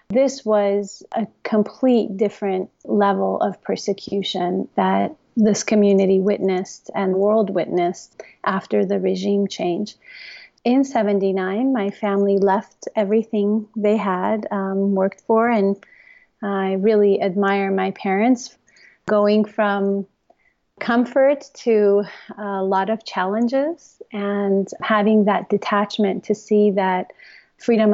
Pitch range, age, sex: 195-220 Hz, 30-49, female